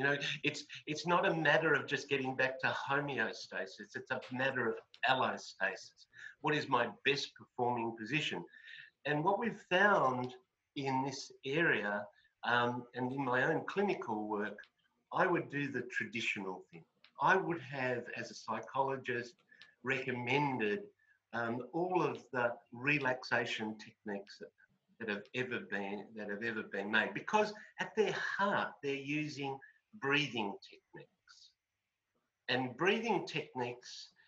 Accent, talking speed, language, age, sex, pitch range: Australian, 135 wpm, English, 50-69, male, 115-155 Hz